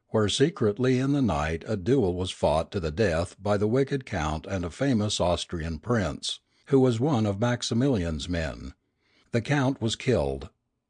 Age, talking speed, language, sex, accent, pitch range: 60-79, 170 wpm, English, male, American, 95-135 Hz